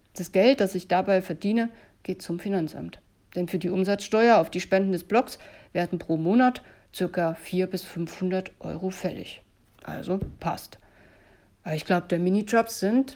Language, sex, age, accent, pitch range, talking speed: German, female, 60-79, German, 160-190 Hz, 160 wpm